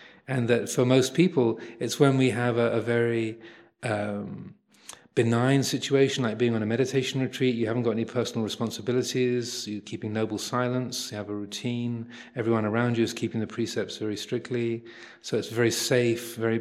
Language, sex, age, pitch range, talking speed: English, male, 40-59, 115-125 Hz, 175 wpm